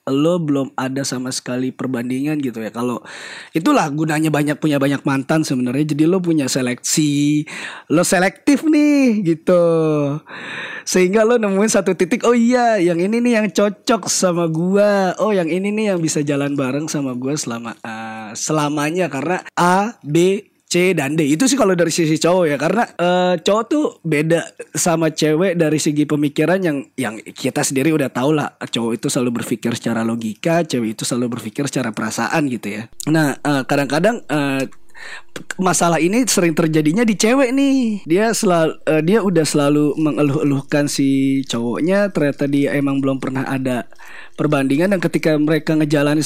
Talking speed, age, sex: 165 wpm, 20-39, male